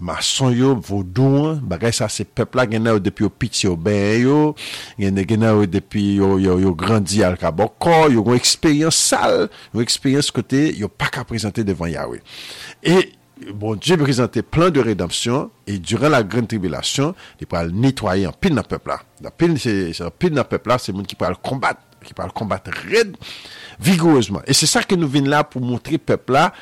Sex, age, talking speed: male, 50-69, 200 wpm